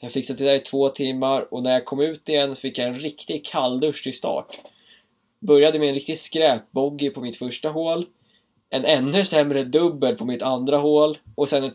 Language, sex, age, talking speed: Swedish, male, 20-39, 210 wpm